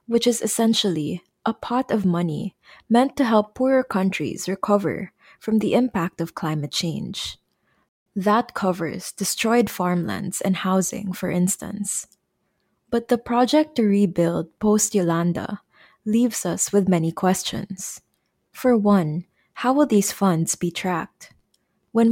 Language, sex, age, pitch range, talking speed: English, female, 20-39, 180-225 Hz, 130 wpm